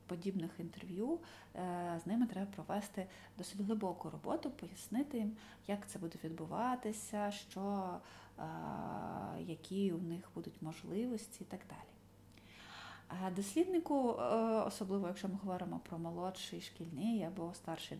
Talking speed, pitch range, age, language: 115 wpm, 180-230 Hz, 30-49, Ukrainian